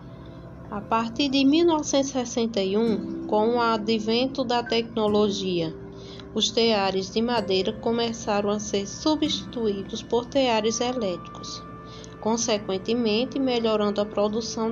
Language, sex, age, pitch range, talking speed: Portuguese, female, 20-39, 205-245 Hz, 100 wpm